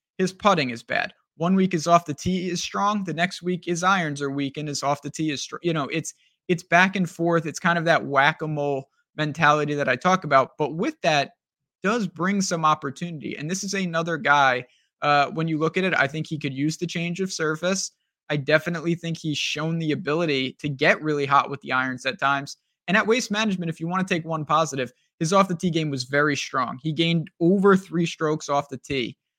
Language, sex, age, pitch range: English, male, 20-39, 140-175 Hz